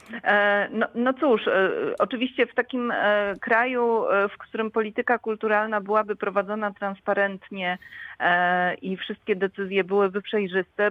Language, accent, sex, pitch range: Polish, native, female, 180-220 Hz